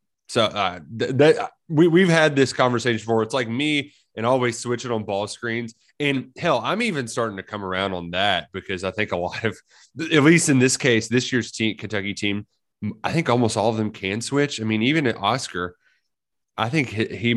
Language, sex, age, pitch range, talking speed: English, male, 30-49, 105-135 Hz, 215 wpm